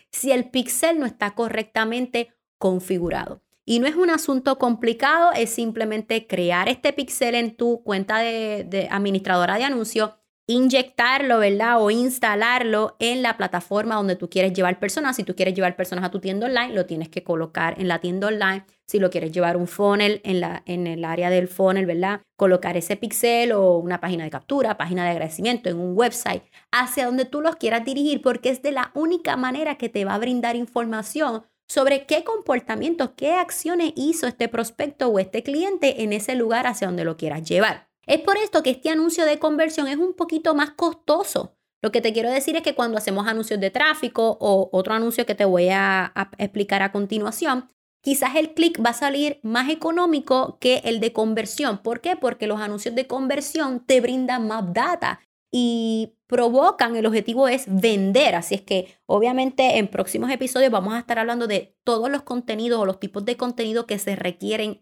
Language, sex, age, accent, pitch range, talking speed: Spanish, female, 20-39, American, 195-260 Hz, 190 wpm